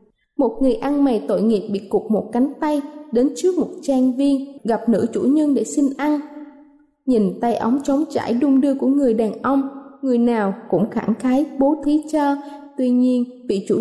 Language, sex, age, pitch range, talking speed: Vietnamese, female, 20-39, 230-295 Hz, 200 wpm